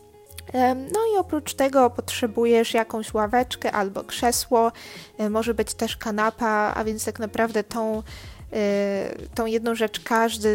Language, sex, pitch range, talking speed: English, female, 210-250 Hz, 125 wpm